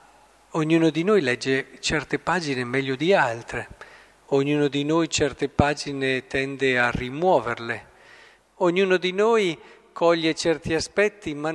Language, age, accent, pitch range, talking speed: Italian, 50-69, native, 130-170 Hz, 125 wpm